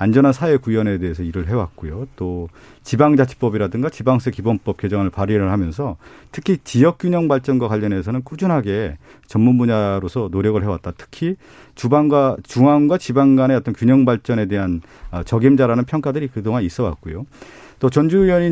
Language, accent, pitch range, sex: Korean, native, 105-150 Hz, male